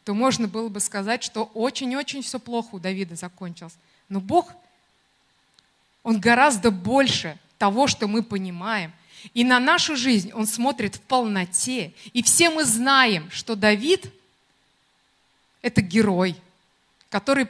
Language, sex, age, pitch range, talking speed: Russian, female, 30-49, 195-260 Hz, 130 wpm